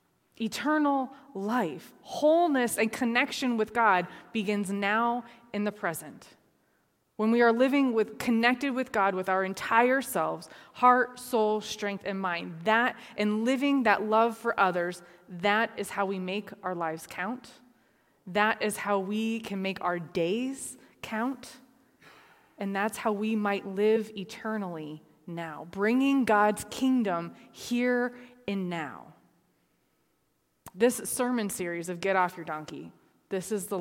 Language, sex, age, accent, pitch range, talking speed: English, female, 20-39, American, 185-225 Hz, 140 wpm